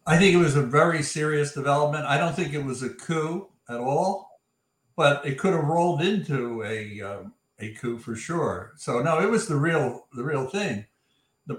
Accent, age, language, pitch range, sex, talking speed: American, 60-79, English, 130-165 Hz, male, 200 wpm